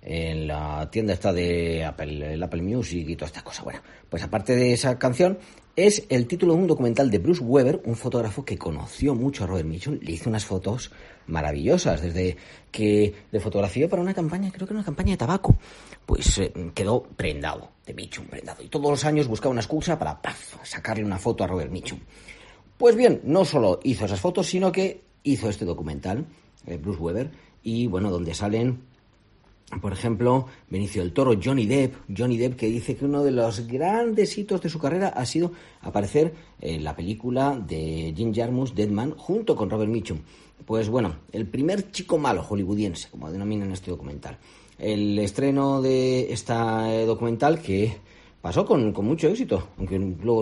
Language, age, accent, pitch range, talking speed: Spanish, 40-59, Spanish, 95-135 Hz, 185 wpm